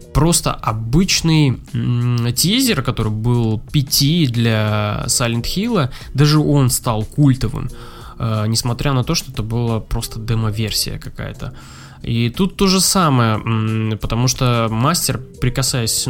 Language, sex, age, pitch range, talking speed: Russian, male, 20-39, 115-140 Hz, 125 wpm